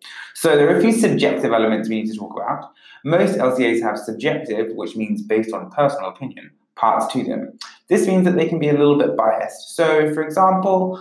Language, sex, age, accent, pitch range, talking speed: English, male, 20-39, British, 110-145 Hz, 205 wpm